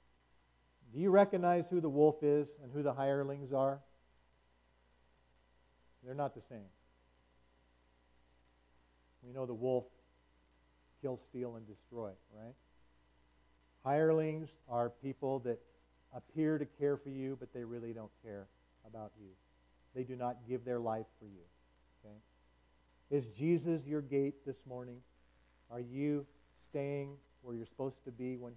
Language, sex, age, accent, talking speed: English, male, 50-69, American, 135 wpm